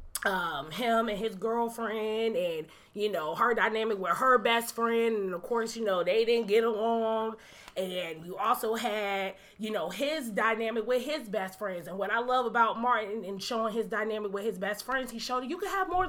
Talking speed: 205 wpm